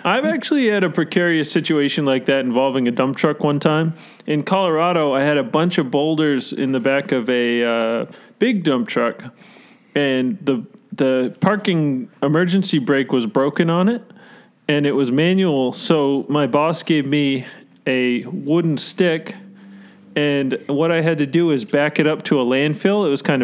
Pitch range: 140-190 Hz